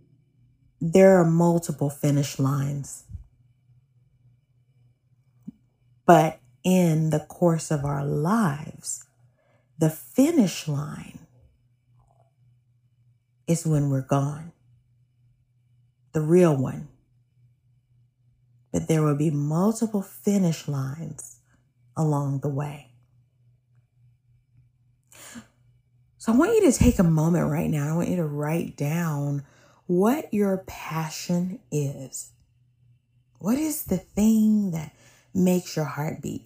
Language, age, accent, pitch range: English, 40-59, American, 125-165 Hz